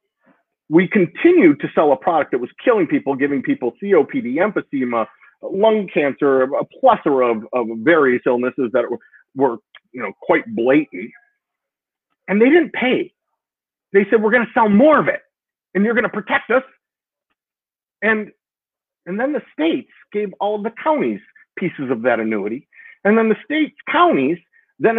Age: 40-59